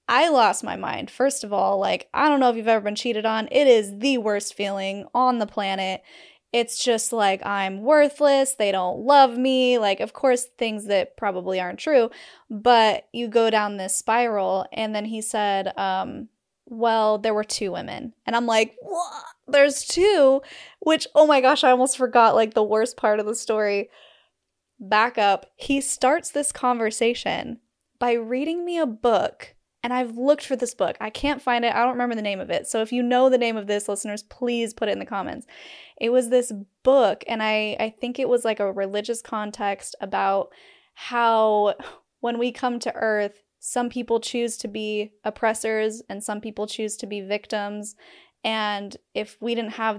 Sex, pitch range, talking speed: female, 210-255 Hz, 190 wpm